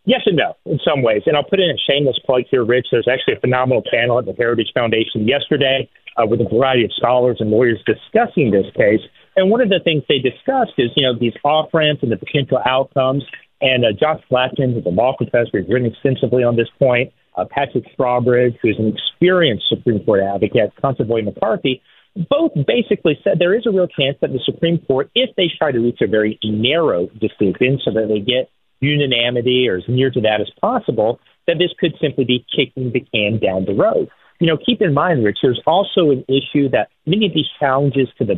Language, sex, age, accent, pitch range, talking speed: English, male, 40-59, American, 120-150 Hz, 215 wpm